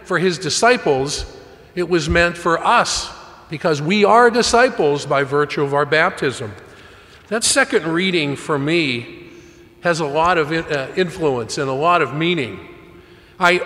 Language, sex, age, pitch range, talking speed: English, male, 50-69, 150-190 Hz, 145 wpm